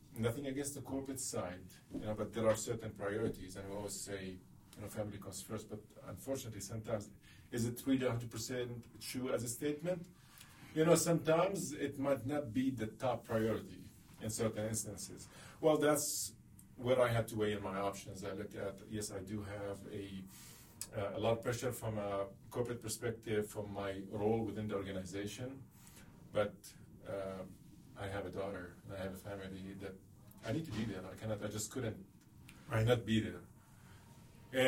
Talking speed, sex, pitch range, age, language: 180 wpm, male, 100-120 Hz, 40-59, English